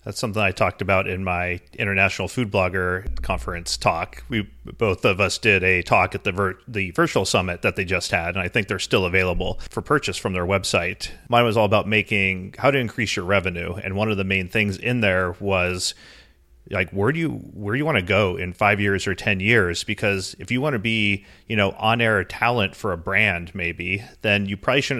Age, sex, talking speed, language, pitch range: 30-49, male, 230 wpm, English, 95-110 Hz